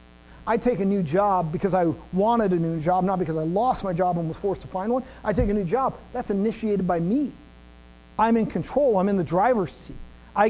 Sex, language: male, English